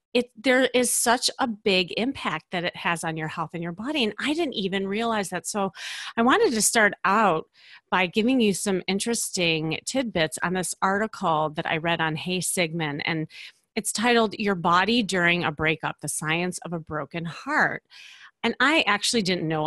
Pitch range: 170-235 Hz